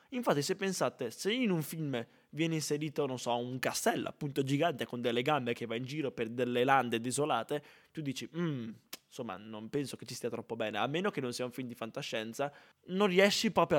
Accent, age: native, 20-39